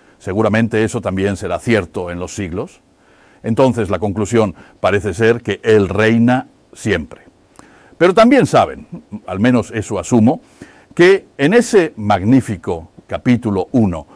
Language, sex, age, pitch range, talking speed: Dutch, male, 60-79, 100-120 Hz, 125 wpm